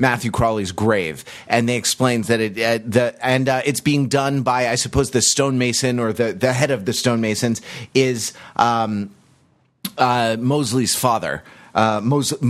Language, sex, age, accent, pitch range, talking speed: English, male, 30-49, American, 105-130 Hz, 160 wpm